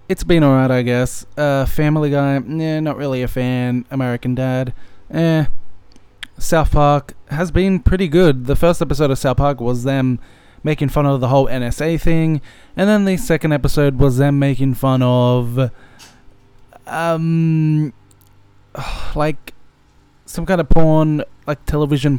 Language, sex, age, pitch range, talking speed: English, male, 20-39, 120-155 Hz, 150 wpm